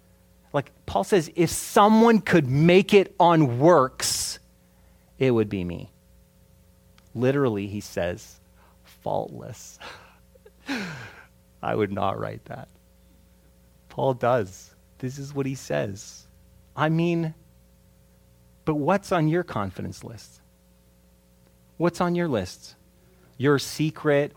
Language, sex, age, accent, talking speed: English, male, 30-49, American, 110 wpm